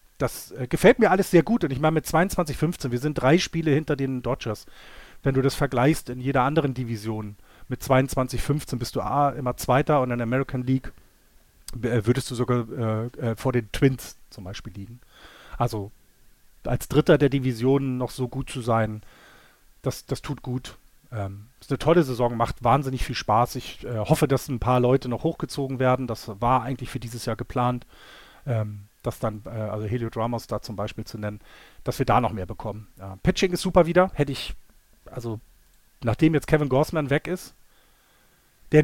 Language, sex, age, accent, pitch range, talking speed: German, male, 30-49, German, 115-145 Hz, 195 wpm